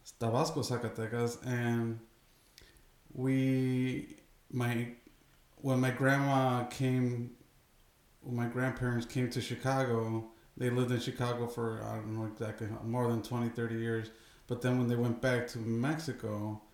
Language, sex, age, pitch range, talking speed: English, male, 20-39, 115-130 Hz, 135 wpm